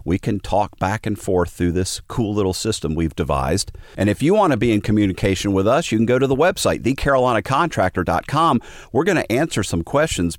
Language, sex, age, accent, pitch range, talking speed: English, male, 50-69, American, 85-120 Hz, 210 wpm